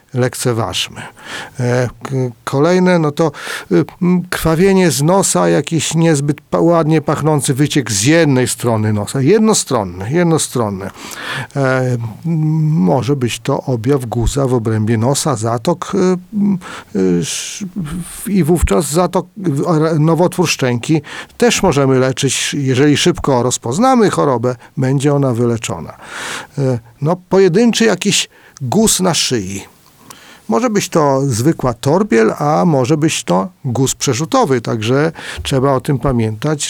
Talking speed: 105 wpm